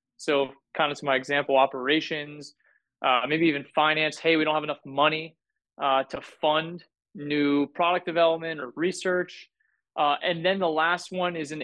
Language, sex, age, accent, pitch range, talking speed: English, male, 20-39, American, 145-170 Hz, 170 wpm